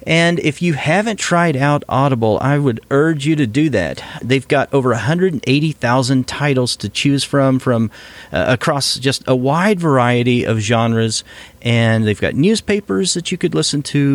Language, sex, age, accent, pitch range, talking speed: English, male, 40-59, American, 110-145 Hz, 170 wpm